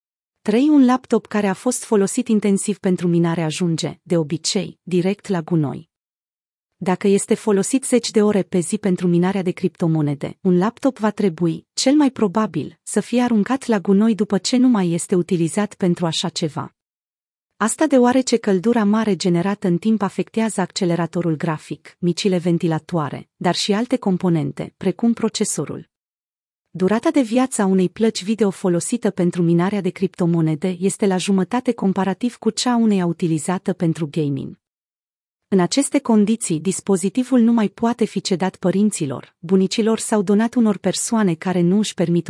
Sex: female